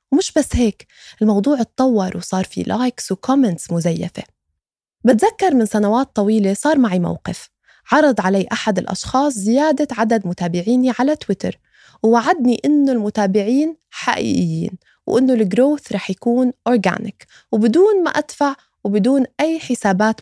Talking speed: 120 wpm